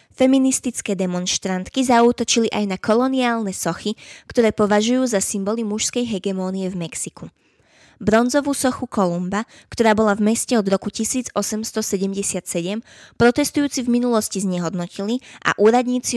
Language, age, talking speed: Slovak, 20-39, 115 wpm